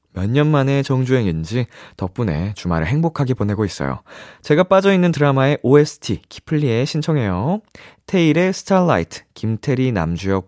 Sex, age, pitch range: male, 20-39, 105-165 Hz